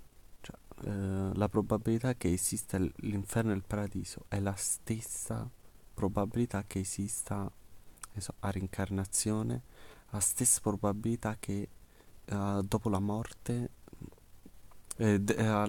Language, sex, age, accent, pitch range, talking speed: Italian, male, 30-49, native, 100-115 Hz, 105 wpm